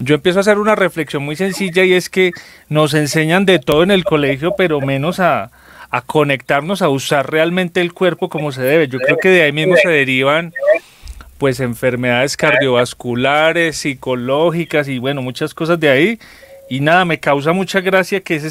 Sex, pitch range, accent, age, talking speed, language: male, 140-180 Hz, Colombian, 30-49, 185 wpm, Spanish